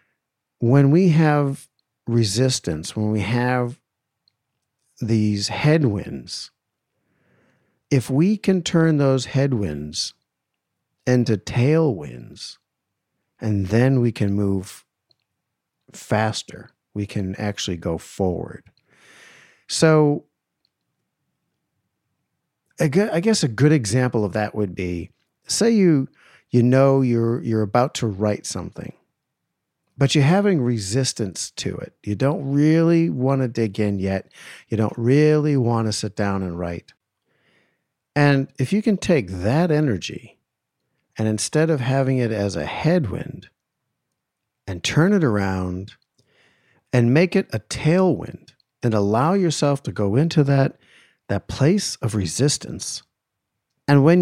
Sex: male